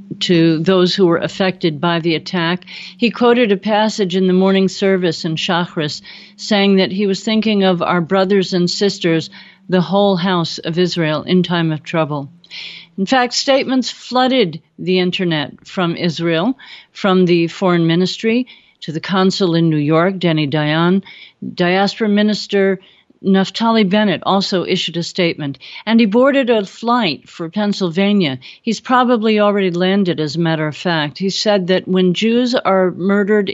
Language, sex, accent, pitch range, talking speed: English, female, American, 165-200 Hz, 155 wpm